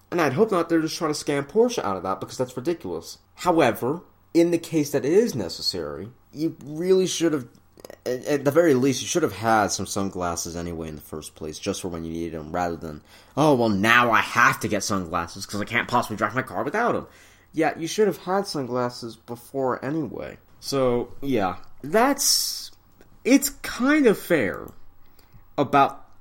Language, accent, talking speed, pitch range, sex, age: English, American, 190 wpm, 95-145 Hz, male, 30-49